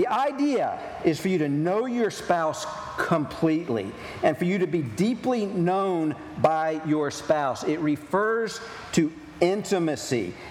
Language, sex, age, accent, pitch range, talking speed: English, male, 50-69, American, 145-200 Hz, 135 wpm